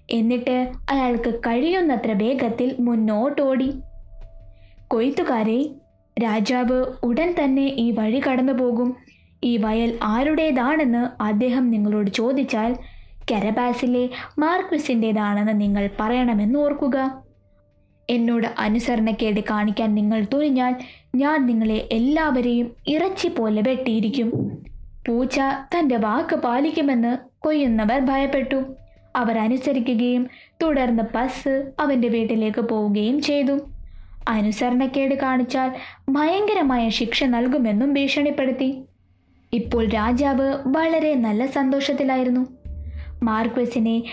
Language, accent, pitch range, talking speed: Malayalam, native, 225-275 Hz, 80 wpm